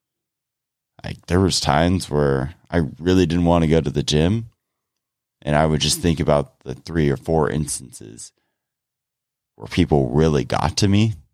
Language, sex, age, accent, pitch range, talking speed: English, male, 30-49, American, 75-115 Hz, 165 wpm